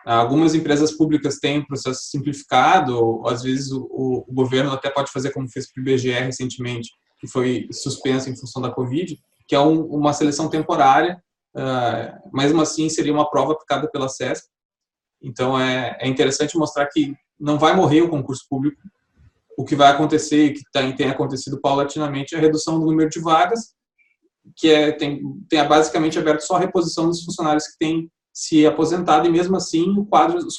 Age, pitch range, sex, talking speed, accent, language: 20-39, 135-160 Hz, male, 185 wpm, Brazilian, Portuguese